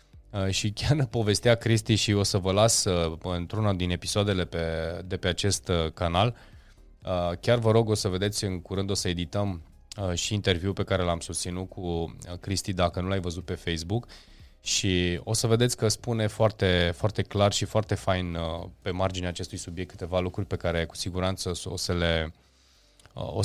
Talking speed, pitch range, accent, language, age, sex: 175 wpm, 90-110 Hz, native, Romanian, 20-39, male